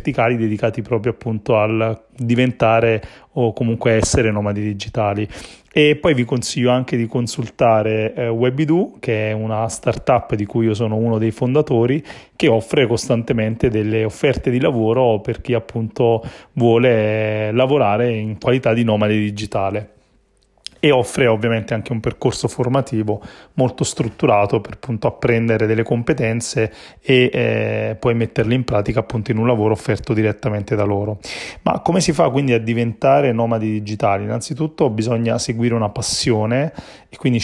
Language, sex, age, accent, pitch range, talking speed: Italian, male, 30-49, native, 110-125 Hz, 145 wpm